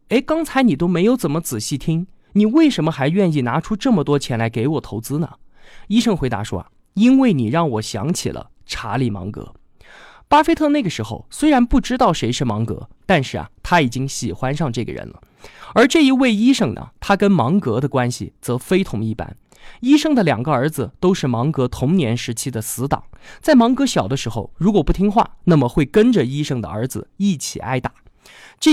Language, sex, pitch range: Chinese, male, 125-215 Hz